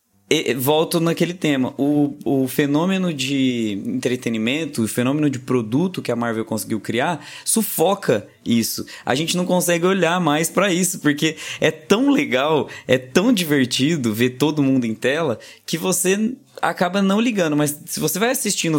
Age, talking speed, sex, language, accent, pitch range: 20-39, 155 wpm, male, Portuguese, Brazilian, 115-150 Hz